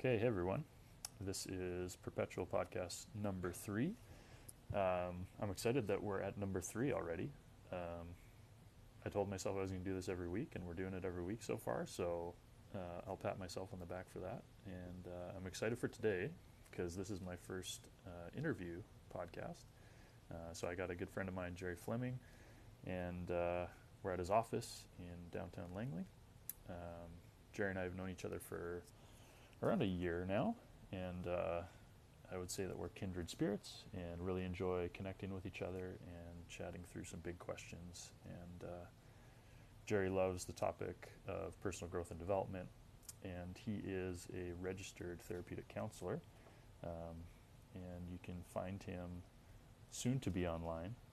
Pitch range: 90-115 Hz